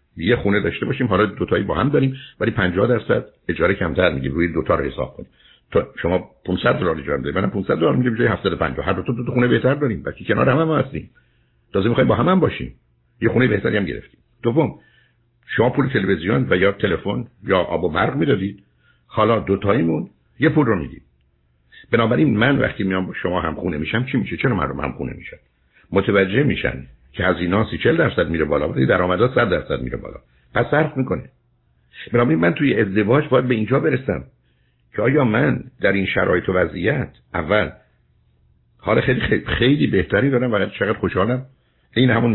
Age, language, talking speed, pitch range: 60-79, Persian, 190 wpm, 75-125 Hz